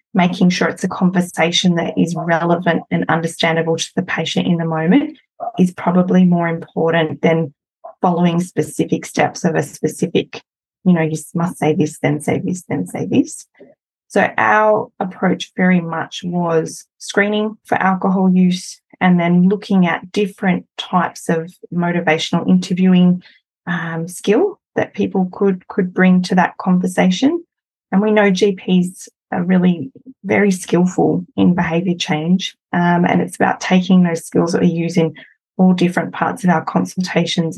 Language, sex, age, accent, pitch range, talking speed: English, female, 20-39, Australian, 170-190 Hz, 155 wpm